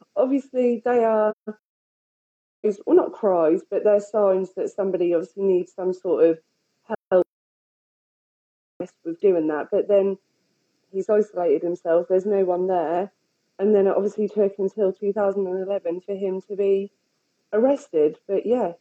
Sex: female